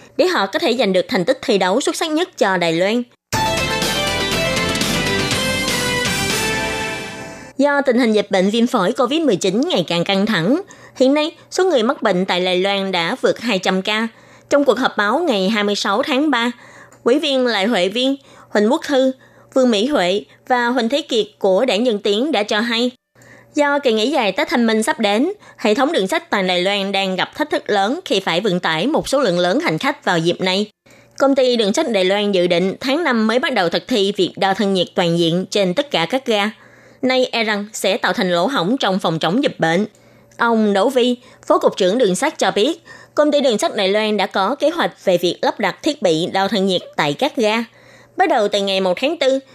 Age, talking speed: 20-39, 220 wpm